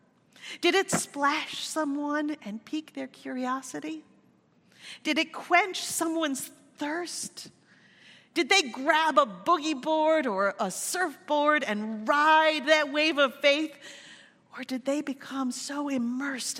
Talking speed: 125 wpm